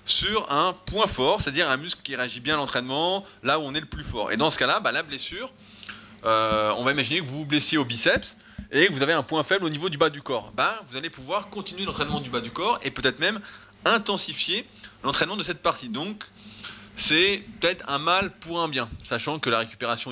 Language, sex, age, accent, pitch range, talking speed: French, male, 20-39, French, 115-170 Hz, 235 wpm